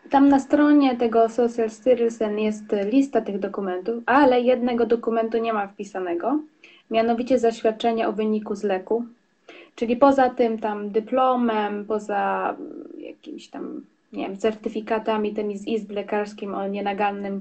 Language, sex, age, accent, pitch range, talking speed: Polish, female, 20-39, native, 200-240 Hz, 130 wpm